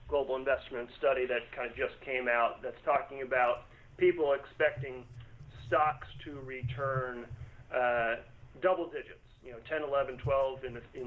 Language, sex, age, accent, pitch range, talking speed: English, male, 40-59, American, 125-150 Hz, 150 wpm